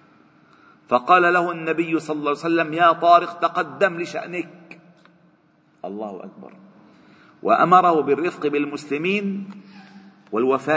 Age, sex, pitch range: 50-69, male, 135-195 Hz